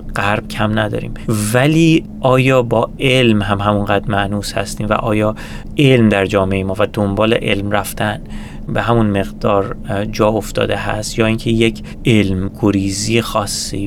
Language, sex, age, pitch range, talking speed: Persian, male, 30-49, 100-115 Hz, 145 wpm